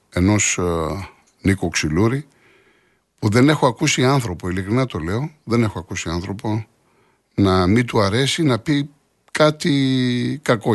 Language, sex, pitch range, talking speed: Greek, male, 80-105 Hz, 135 wpm